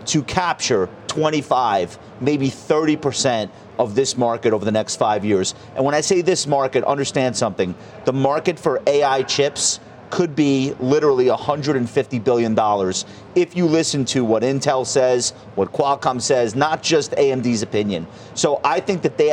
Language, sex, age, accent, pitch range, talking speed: English, male, 30-49, American, 120-150 Hz, 155 wpm